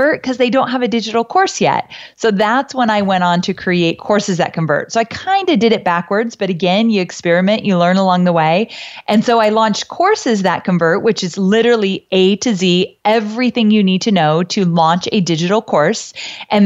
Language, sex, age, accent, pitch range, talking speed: English, female, 30-49, American, 175-225 Hz, 215 wpm